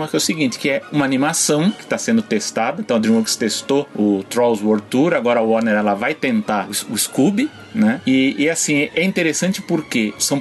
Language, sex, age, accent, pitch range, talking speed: Portuguese, male, 30-49, Brazilian, 115-170 Hz, 210 wpm